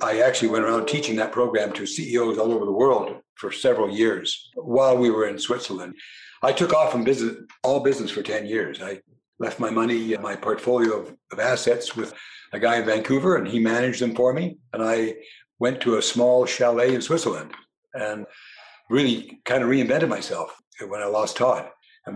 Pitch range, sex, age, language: 115-135 Hz, male, 60-79, English